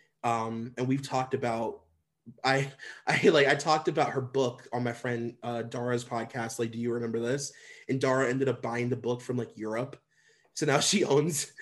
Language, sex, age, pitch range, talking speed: English, male, 20-39, 120-140 Hz, 195 wpm